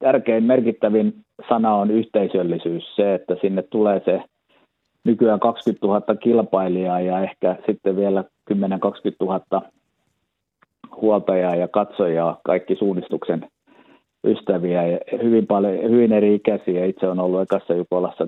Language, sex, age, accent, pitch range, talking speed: Finnish, male, 50-69, native, 90-105 Hz, 115 wpm